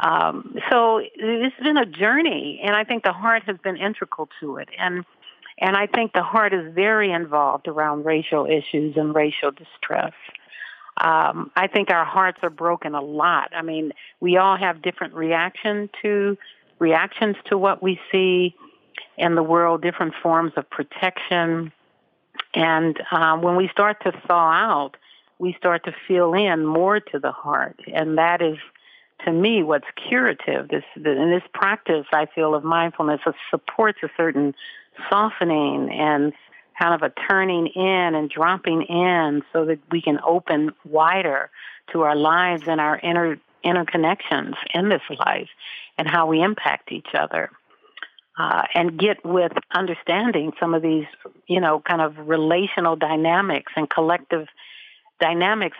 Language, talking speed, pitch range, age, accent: English, 155 wpm, 160-195 Hz, 50-69, American